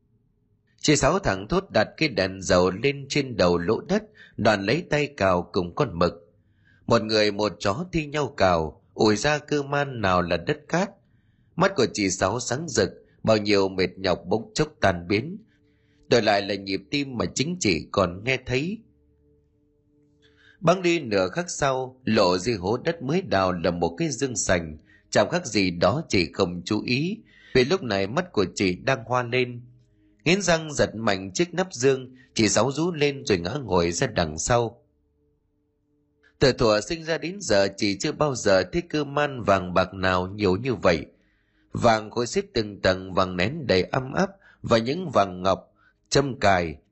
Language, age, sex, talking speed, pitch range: Vietnamese, 30-49, male, 185 wpm, 95-140 Hz